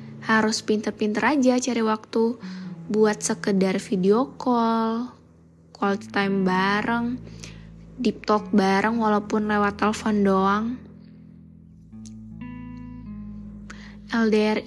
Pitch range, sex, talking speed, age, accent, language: 190-220 Hz, female, 80 wpm, 10-29, native, Indonesian